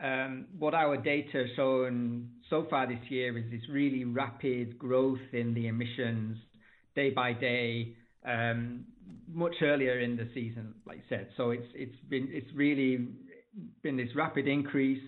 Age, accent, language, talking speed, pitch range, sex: 40-59, British, English, 155 wpm, 120-140 Hz, male